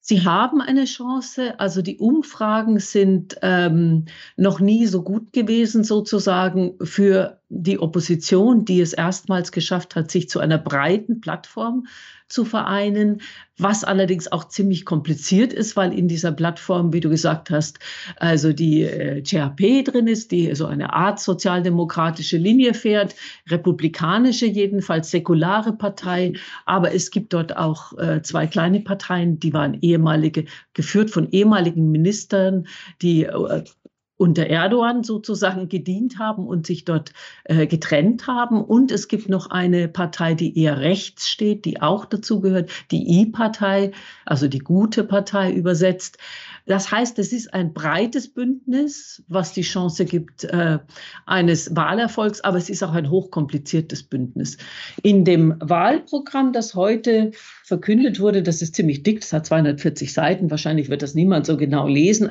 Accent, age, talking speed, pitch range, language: German, 50-69, 145 wpm, 165-210 Hz, German